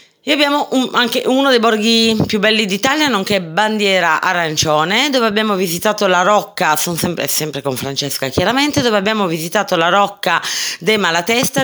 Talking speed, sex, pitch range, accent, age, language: 155 wpm, female, 175-215 Hz, native, 30-49, Italian